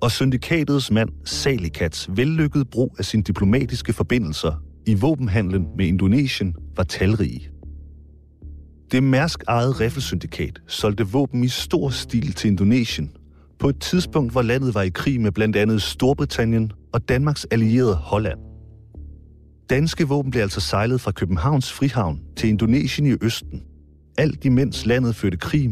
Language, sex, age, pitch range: English, male, 40-59, 75-125 Hz